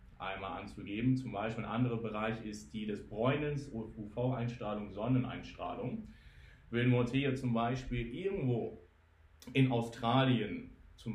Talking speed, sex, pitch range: 125 wpm, male, 105-125 Hz